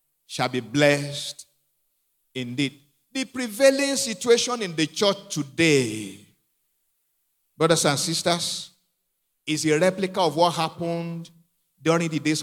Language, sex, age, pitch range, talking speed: English, male, 50-69, 145-195 Hz, 110 wpm